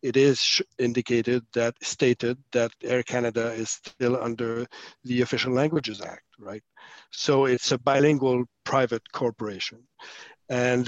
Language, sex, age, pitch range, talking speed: English, male, 50-69, 115-135 Hz, 125 wpm